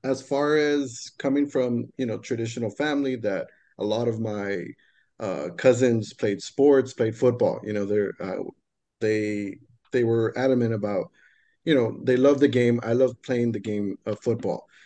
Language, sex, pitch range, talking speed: English, male, 115-140 Hz, 170 wpm